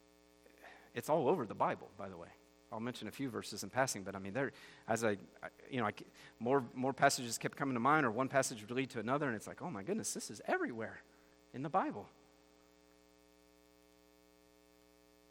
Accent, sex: American, male